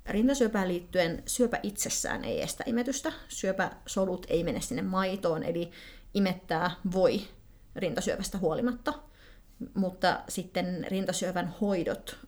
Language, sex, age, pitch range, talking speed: Finnish, female, 30-49, 175-225 Hz, 105 wpm